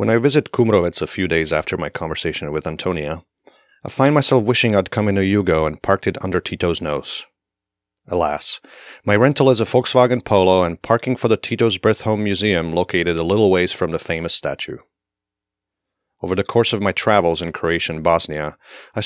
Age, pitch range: 30-49, 85-120 Hz